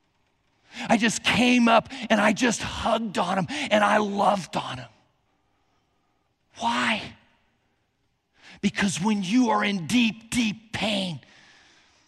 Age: 40-59